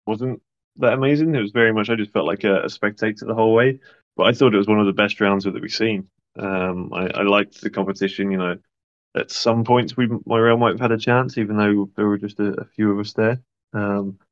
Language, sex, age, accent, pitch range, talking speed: English, male, 20-39, British, 100-110 Hz, 255 wpm